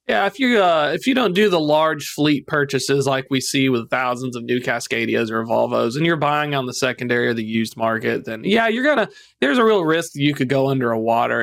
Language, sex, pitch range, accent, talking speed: English, male, 120-155 Hz, American, 250 wpm